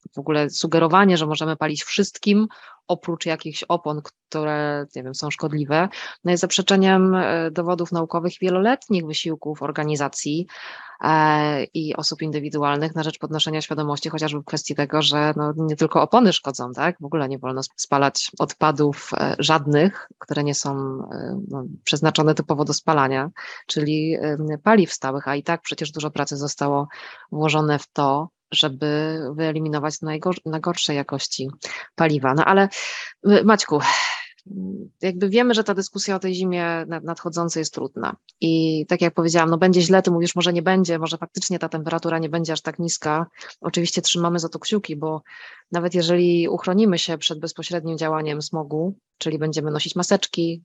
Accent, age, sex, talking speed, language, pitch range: Polish, 20-39, female, 155 wpm, English, 150-175 Hz